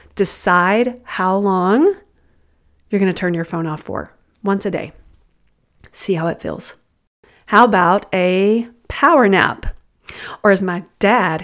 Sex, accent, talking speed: female, American, 140 wpm